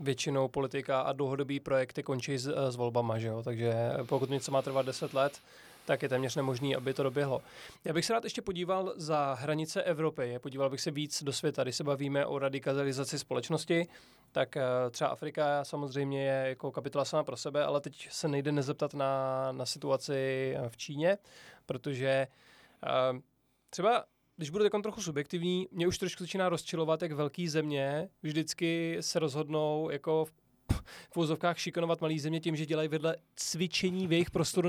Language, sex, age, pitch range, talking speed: Czech, male, 20-39, 135-165 Hz, 170 wpm